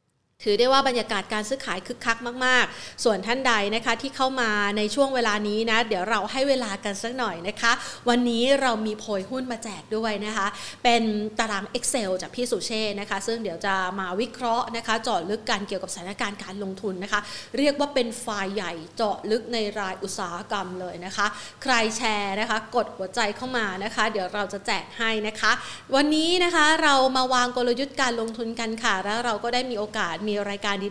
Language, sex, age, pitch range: Thai, female, 30-49, 205-265 Hz